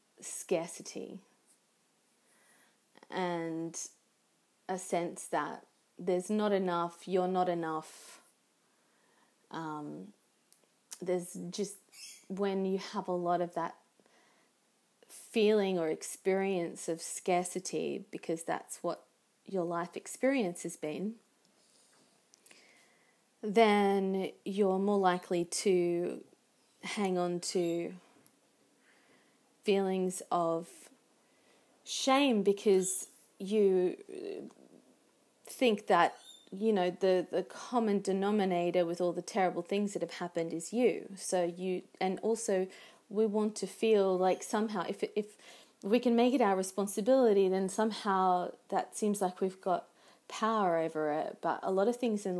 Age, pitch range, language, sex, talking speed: 30-49, 175-215 Hz, English, female, 115 wpm